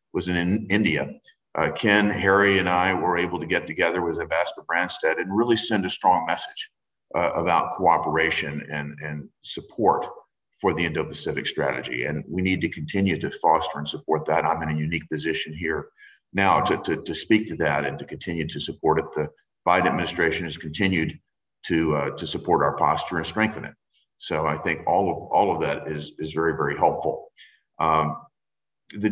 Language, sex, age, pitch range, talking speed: English, male, 50-69, 80-100 Hz, 185 wpm